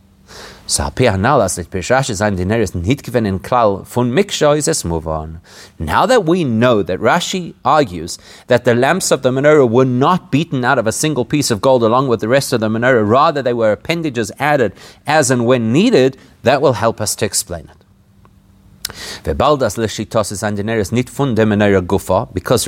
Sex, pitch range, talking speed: male, 110-150 Hz, 125 wpm